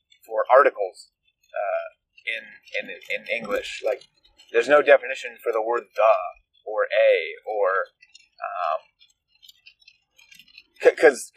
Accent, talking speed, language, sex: American, 110 wpm, English, male